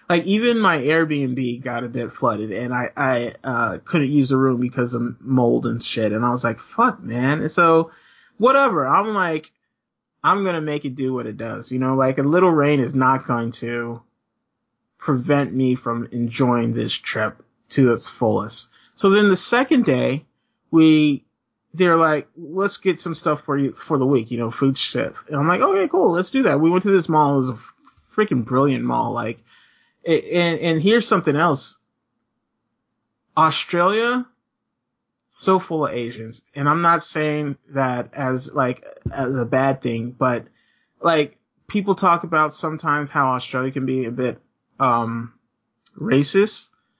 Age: 30-49